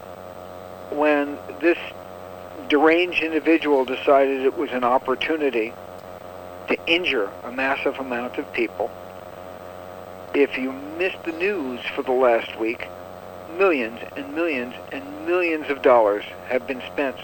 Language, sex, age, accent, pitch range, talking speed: English, male, 60-79, American, 115-165 Hz, 120 wpm